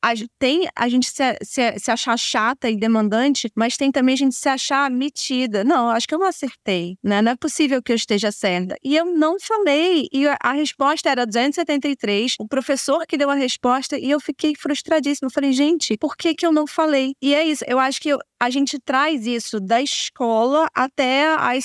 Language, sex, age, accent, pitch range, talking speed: Portuguese, female, 20-39, Brazilian, 230-290 Hz, 210 wpm